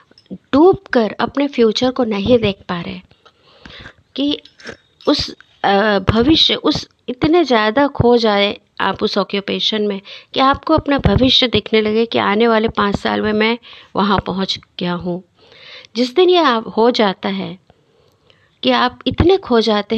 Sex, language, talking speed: female, Hindi, 145 wpm